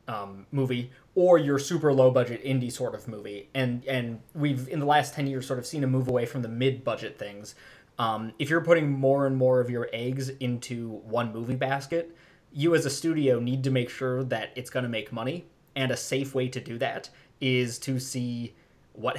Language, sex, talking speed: English, male, 210 wpm